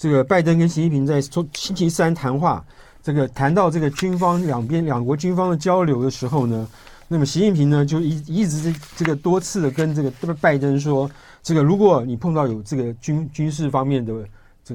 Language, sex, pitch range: Chinese, male, 135-170 Hz